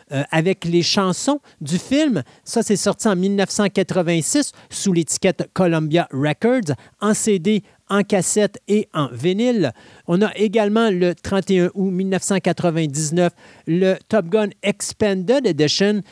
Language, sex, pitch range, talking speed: French, male, 165-210 Hz, 125 wpm